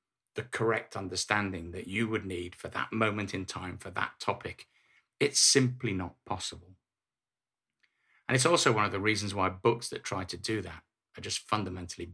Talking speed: 180 wpm